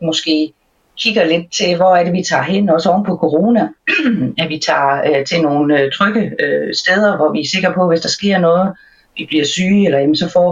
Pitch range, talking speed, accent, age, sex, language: 155-190 Hz, 210 wpm, native, 40-59, female, Danish